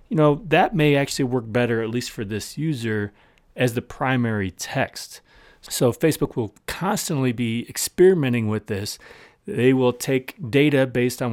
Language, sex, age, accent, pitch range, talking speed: English, male, 30-49, American, 105-140 Hz, 160 wpm